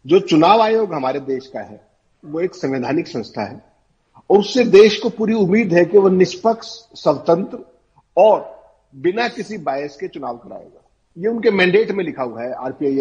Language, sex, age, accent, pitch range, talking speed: Hindi, male, 50-69, native, 150-215 Hz, 175 wpm